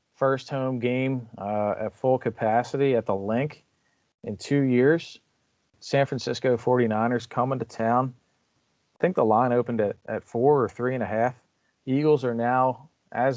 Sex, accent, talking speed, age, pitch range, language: male, American, 160 wpm, 40-59, 105-125 Hz, English